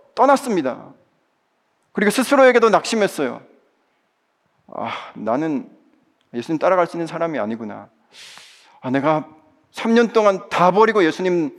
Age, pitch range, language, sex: 40-59, 150-210 Hz, Korean, male